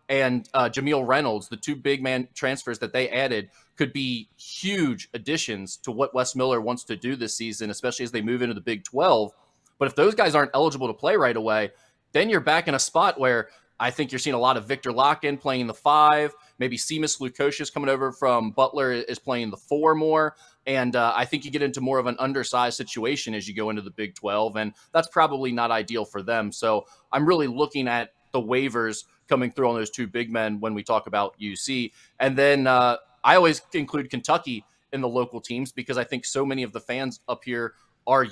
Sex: male